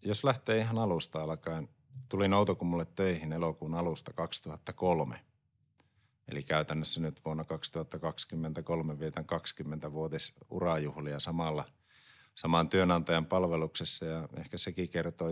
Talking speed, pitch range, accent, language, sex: 100 wpm, 80-100 Hz, native, Finnish, male